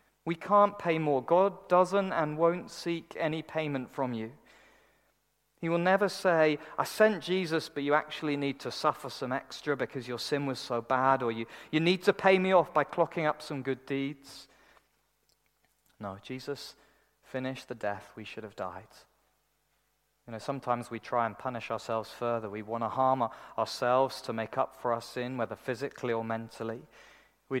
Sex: male